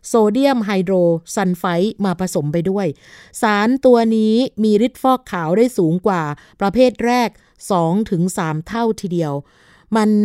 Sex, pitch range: female, 175-220 Hz